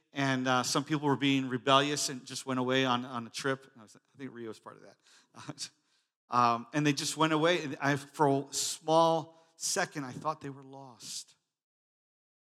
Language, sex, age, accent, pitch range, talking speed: English, male, 50-69, American, 125-150 Hz, 195 wpm